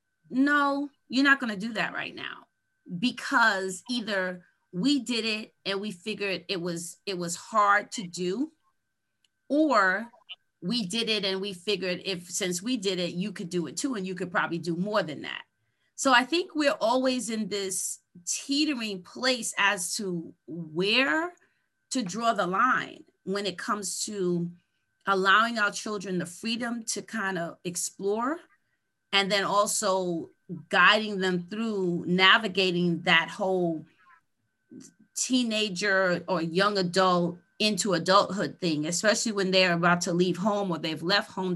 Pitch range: 180-240 Hz